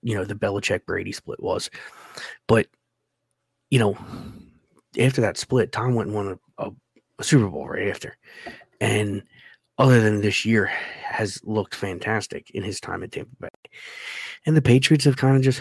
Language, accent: English, American